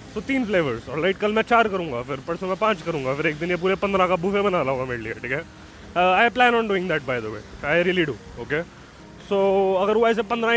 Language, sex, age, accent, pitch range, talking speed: Hindi, male, 20-39, native, 175-245 Hz, 255 wpm